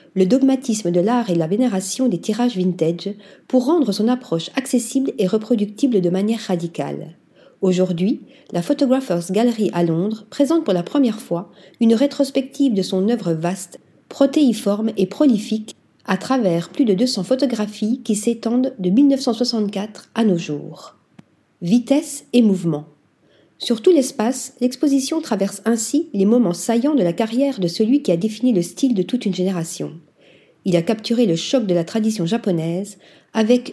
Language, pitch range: French, 185-250 Hz